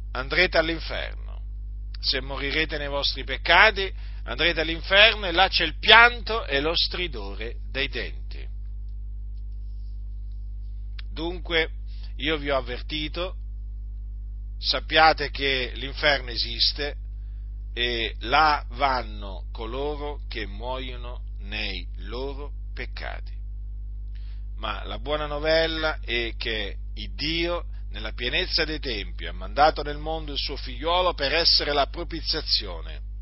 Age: 50-69